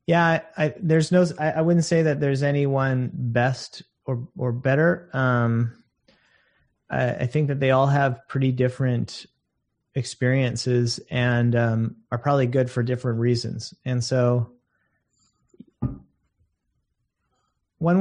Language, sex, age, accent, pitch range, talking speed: English, male, 30-49, American, 120-145 Hz, 125 wpm